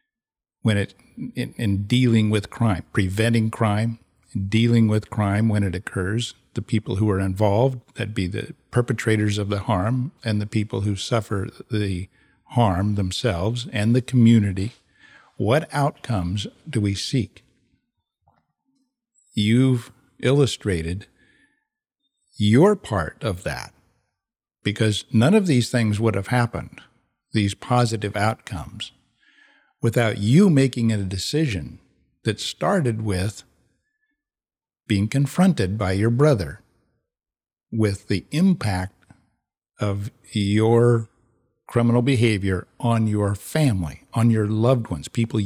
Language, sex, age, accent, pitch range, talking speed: English, male, 60-79, American, 105-125 Hz, 115 wpm